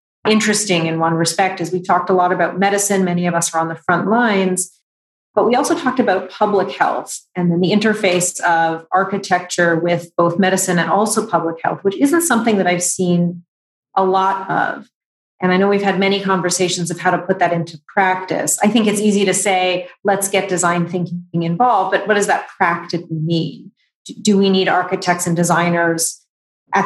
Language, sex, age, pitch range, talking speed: English, female, 30-49, 175-195 Hz, 190 wpm